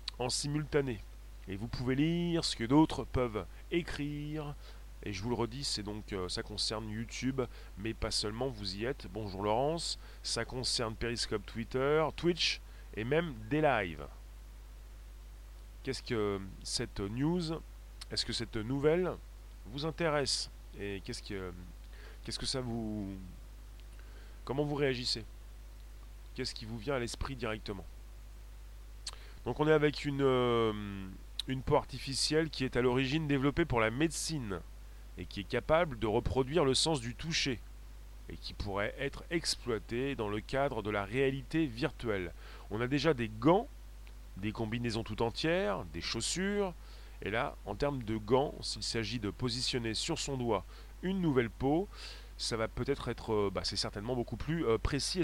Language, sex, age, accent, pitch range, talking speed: French, male, 30-49, French, 105-140 Hz, 160 wpm